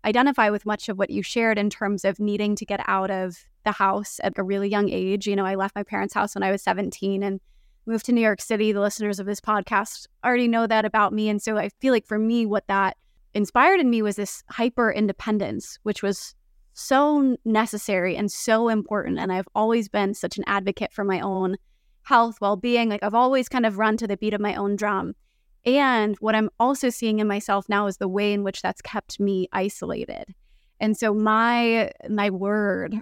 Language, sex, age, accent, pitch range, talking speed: English, female, 20-39, American, 200-220 Hz, 220 wpm